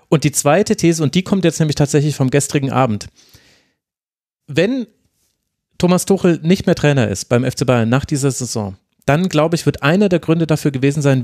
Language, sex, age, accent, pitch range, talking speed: German, male, 30-49, German, 125-160 Hz, 190 wpm